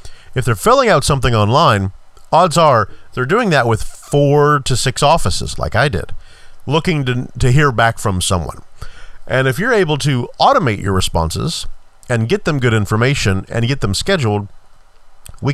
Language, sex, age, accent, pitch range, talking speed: English, male, 40-59, American, 100-140 Hz, 170 wpm